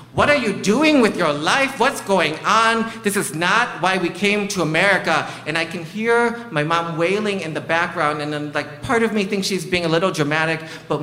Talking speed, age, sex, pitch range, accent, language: 225 wpm, 40-59, male, 135-195 Hz, American, English